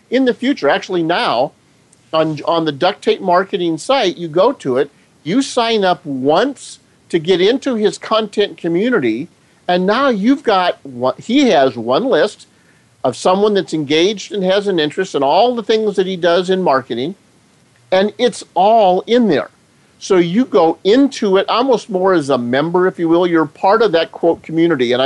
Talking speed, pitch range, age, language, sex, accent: 185 wpm, 160-210 Hz, 50-69, English, male, American